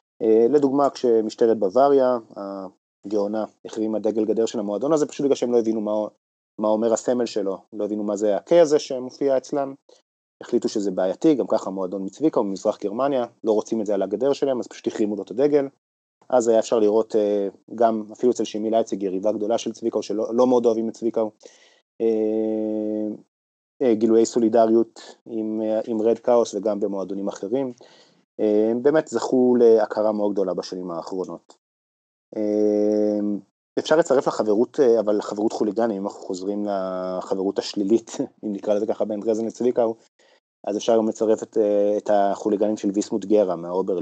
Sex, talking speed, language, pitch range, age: male, 160 wpm, Hebrew, 105-115 Hz, 30-49